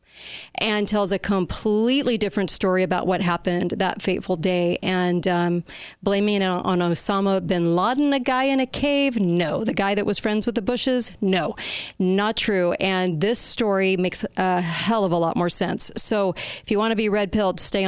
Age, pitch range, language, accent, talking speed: 40-59, 180-210 Hz, English, American, 190 wpm